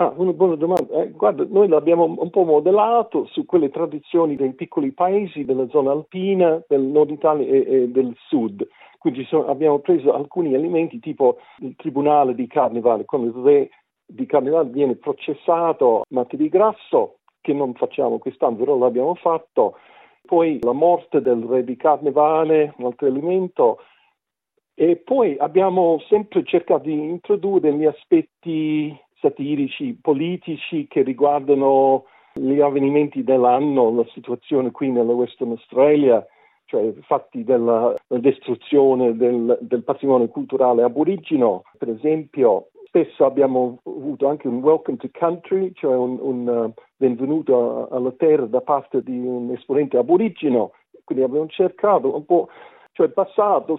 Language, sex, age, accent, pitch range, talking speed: Italian, male, 50-69, native, 135-195 Hz, 140 wpm